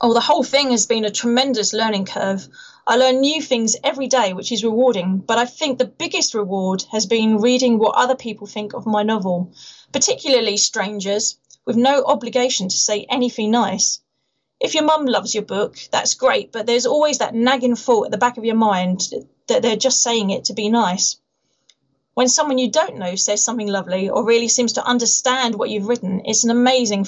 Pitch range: 210-255 Hz